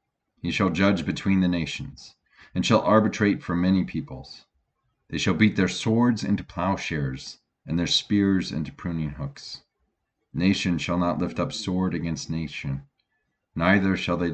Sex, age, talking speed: male, 40-59, 150 wpm